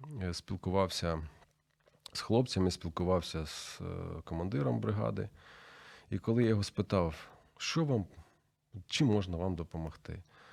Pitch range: 85-100 Hz